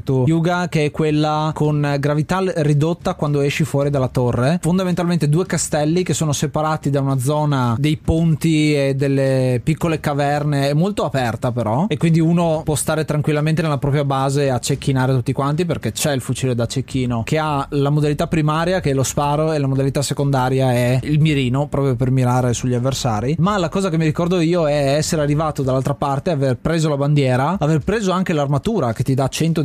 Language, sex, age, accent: Italian, male, 20-39, native